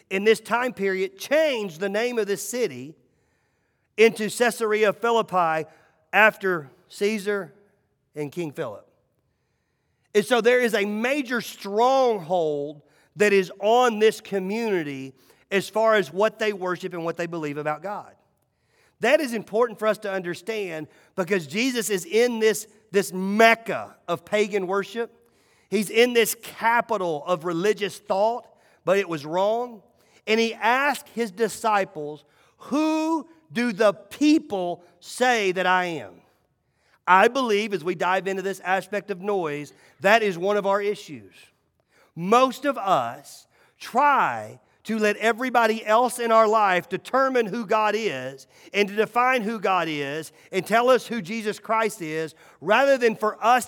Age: 40-59